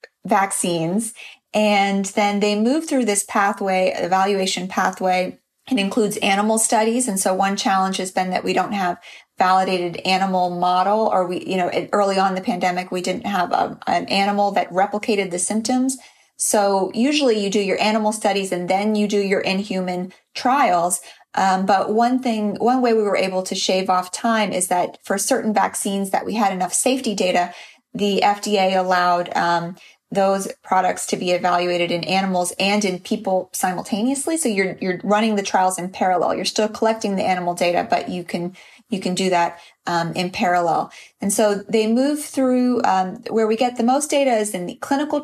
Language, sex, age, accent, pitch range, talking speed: English, female, 30-49, American, 185-220 Hz, 185 wpm